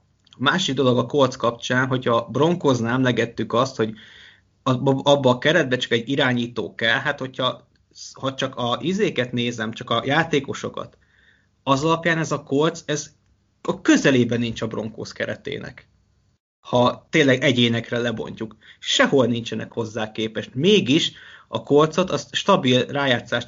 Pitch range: 120-145 Hz